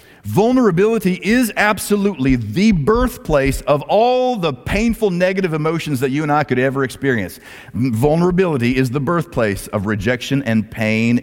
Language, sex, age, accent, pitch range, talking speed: English, male, 50-69, American, 105-175 Hz, 140 wpm